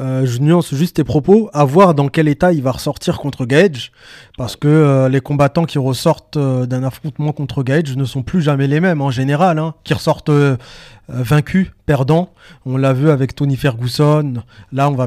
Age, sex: 20-39, male